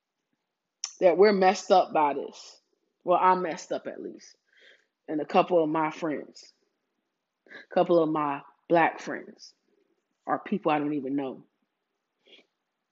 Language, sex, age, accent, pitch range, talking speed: English, female, 30-49, American, 175-230 Hz, 140 wpm